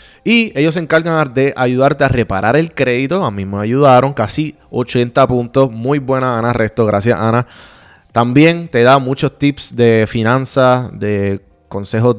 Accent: Venezuelan